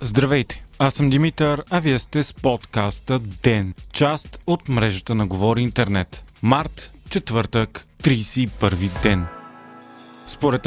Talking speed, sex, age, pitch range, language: 120 wpm, male, 30-49, 120-155 Hz, Bulgarian